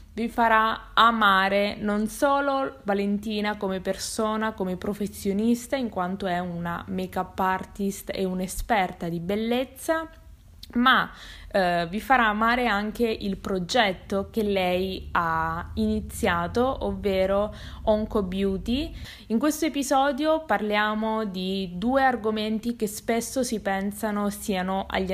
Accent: native